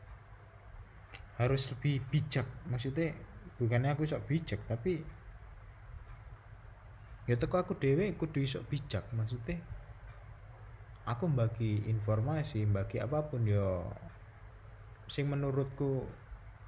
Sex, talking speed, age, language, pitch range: male, 95 wpm, 20-39, Indonesian, 105-125 Hz